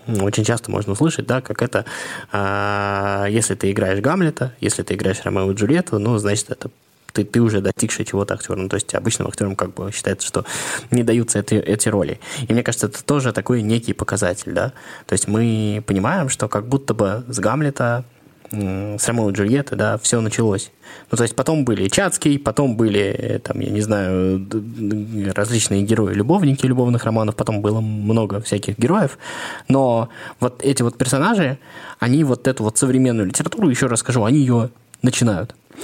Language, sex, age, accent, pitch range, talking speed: Russian, male, 20-39, native, 100-125 Hz, 175 wpm